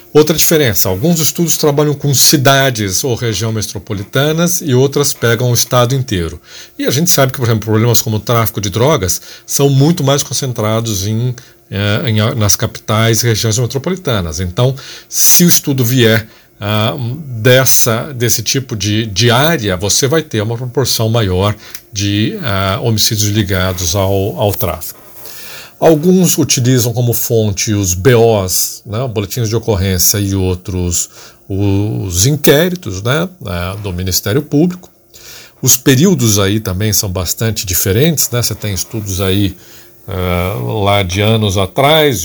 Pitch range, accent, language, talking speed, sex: 100-130 Hz, Brazilian, Portuguese, 140 wpm, male